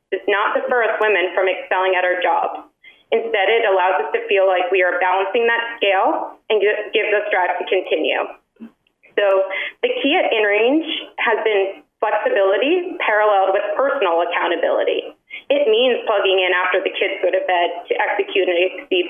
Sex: female